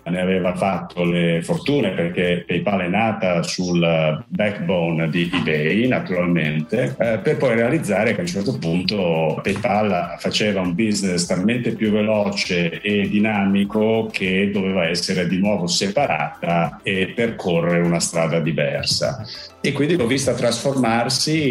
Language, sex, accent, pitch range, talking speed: Italian, male, native, 90-115 Hz, 130 wpm